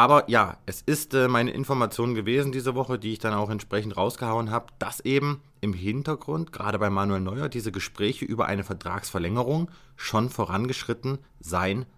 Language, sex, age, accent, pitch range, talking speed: German, male, 30-49, German, 105-135 Hz, 160 wpm